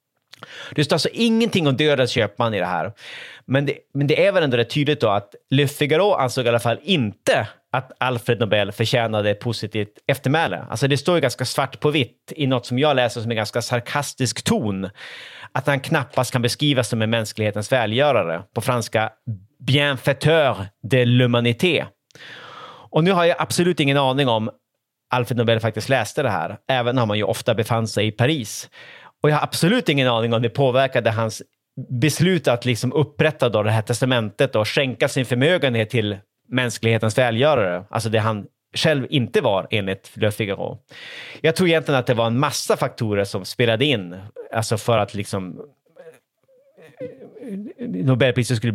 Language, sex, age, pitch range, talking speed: Swedish, male, 30-49, 115-145 Hz, 175 wpm